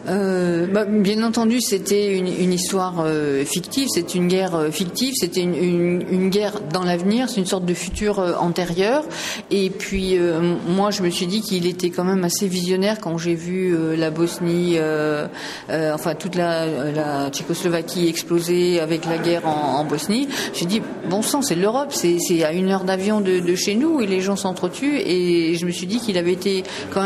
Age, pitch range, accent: 40-59, 175-205 Hz, French